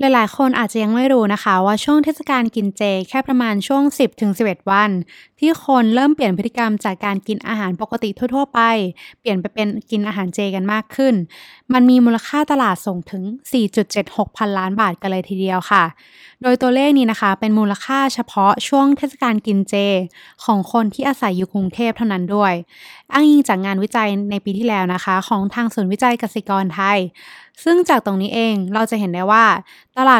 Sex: female